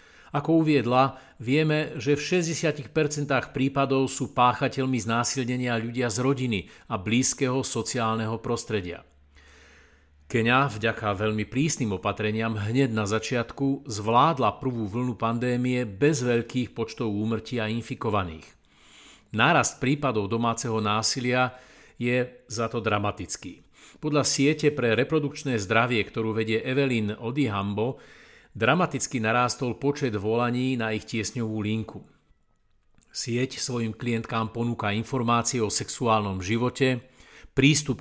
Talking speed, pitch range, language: 105 wpm, 110-135 Hz, Slovak